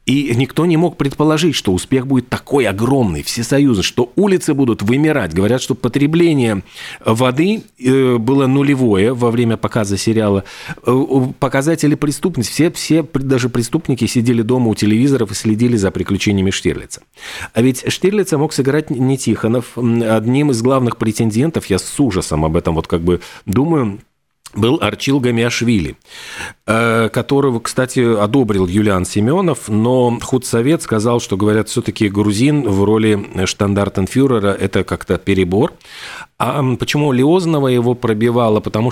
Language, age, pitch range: Russian, 40-59, 105-135 Hz